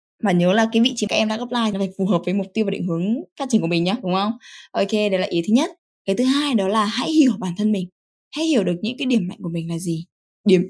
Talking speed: 315 wpm